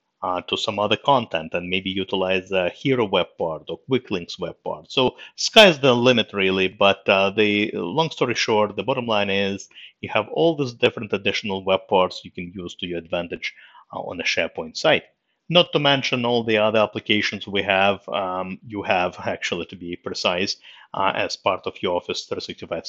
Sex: male